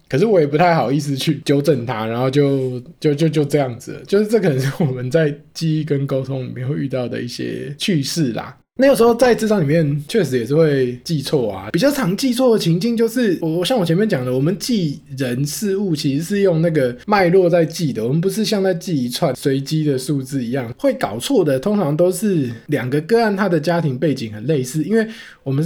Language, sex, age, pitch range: Chinese, male, 20-39, 130-175 Hz